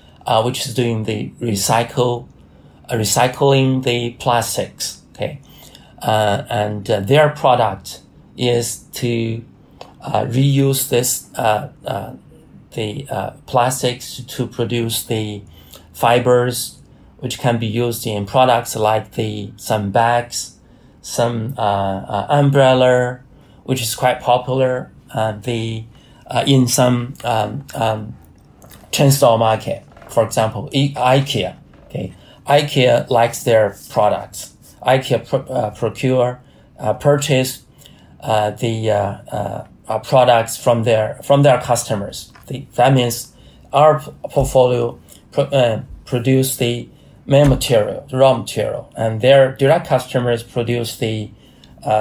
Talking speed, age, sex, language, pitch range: 115 wpm, 30-49, male, English, 110-130 Hz